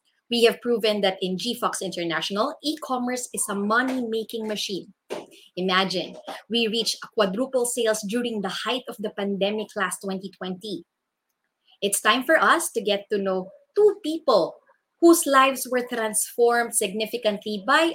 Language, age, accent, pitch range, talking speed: English, 20-39, Filipino, 195-250 Hz, 140 wpm